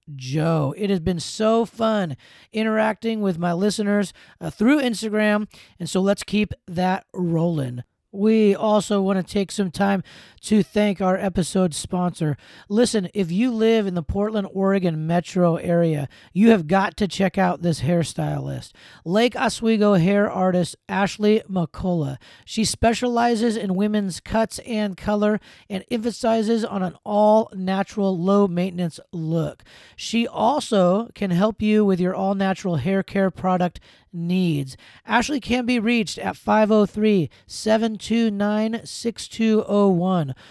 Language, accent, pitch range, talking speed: English, American, 180-215 Hz, 135 wpm